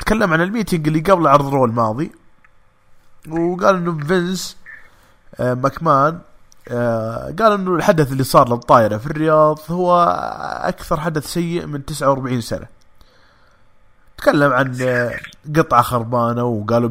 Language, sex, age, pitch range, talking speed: English, male, 20-39, 120-170 Hz, 115 wpm